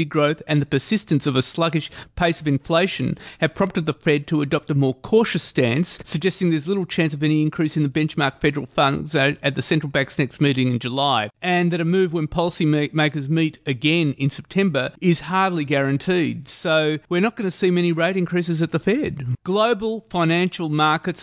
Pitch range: 150-180 Hz